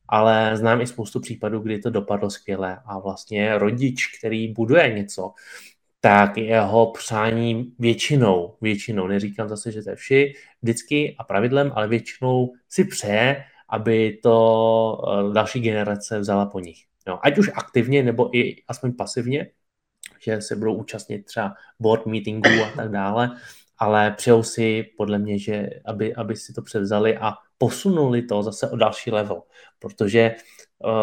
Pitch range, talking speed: 105-115 Hz, 150 wpm